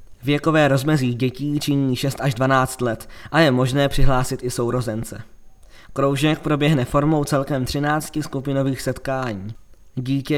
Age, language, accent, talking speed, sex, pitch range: 20-39, Czech, native, 125 wpm, male, 125-145 Hz